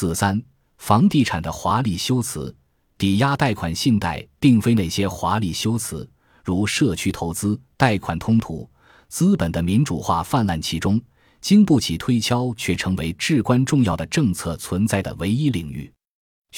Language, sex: Chinese, male